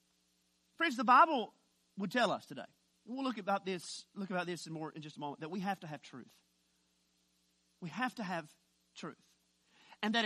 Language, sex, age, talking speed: English, male, 40-59, 195 wpm